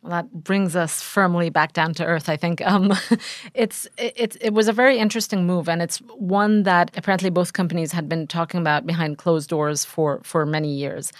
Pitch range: 145-170 Hz